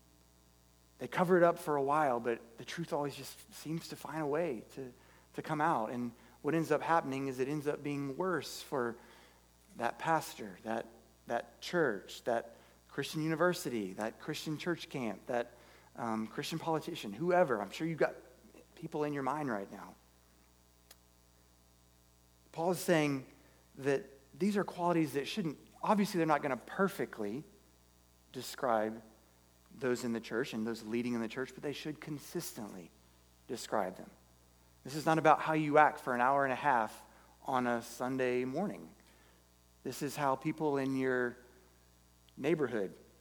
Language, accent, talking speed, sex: English, American, 160 wpm, male